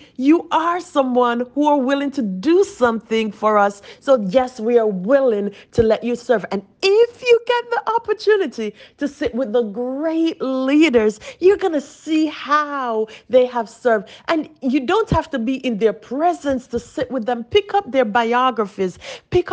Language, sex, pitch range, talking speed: English, female, 250-345 Hz, 180 wpm